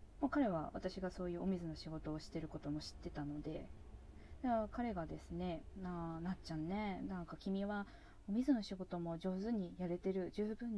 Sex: female